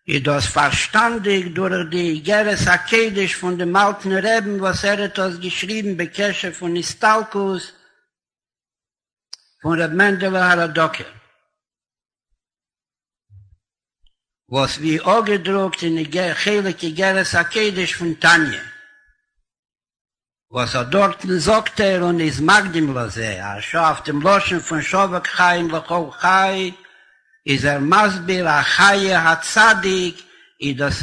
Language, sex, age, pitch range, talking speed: Hebrew, male, 60-79, 170-200 Hz, 110 wpm